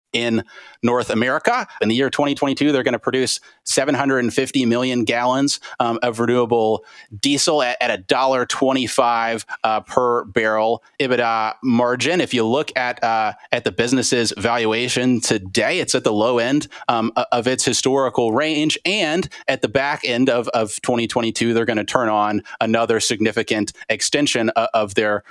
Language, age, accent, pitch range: English, 30-49, American, 110-130 Hz